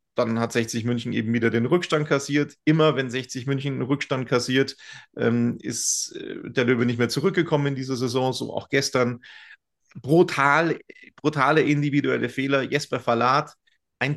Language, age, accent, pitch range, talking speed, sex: German, 30-49, German, 125-145 Hz, 155 wpm, male